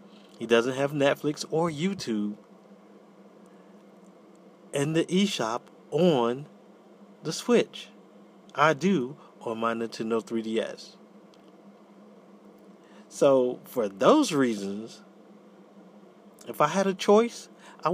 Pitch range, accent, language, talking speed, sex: 115-170 Hz, American, English, 95 wpm, male